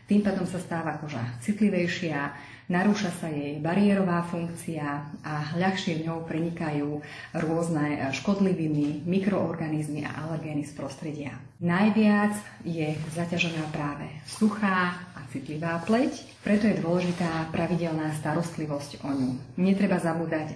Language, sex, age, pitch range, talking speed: Slovak, female, 30-49, 150-180 Hz, 115 wpm